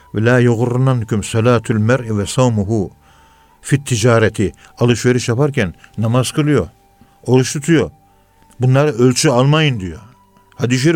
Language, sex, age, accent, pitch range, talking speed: Turkish, male, 50-69, native, 100-145 Hz, 100 wpm